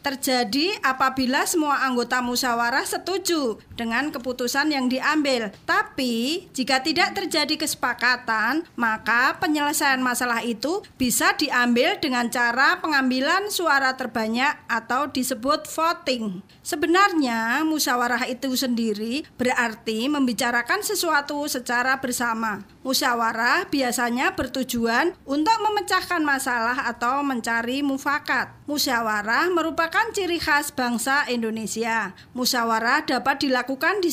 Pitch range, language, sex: 240-305 Hz, Indonesian, female